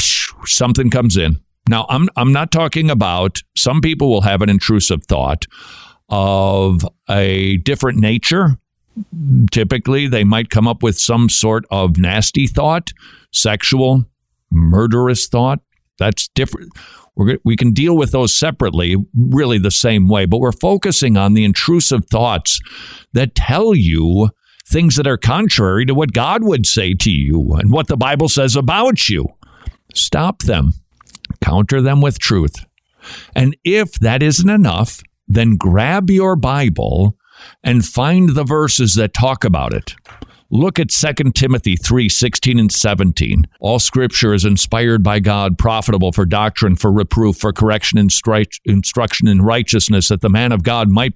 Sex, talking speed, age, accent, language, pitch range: male, 150 wpm, 50-69, American, English, 100-135 Hz